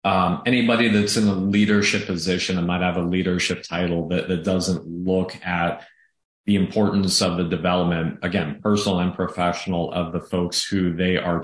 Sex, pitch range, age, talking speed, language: male, 90-100 Hz, 30-49, 175 wpm, English